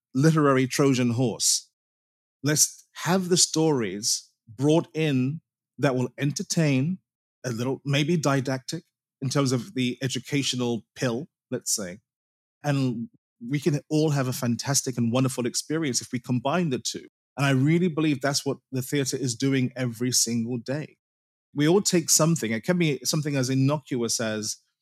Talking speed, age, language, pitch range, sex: 150 wpm, 30-49, English, 125-155 Hz, male